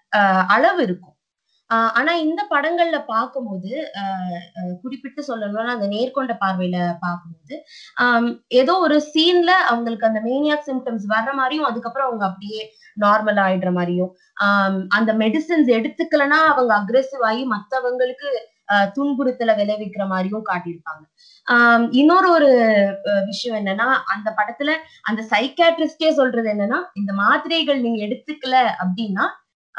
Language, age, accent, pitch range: Tamil, 20-39, native, 195-275 Hz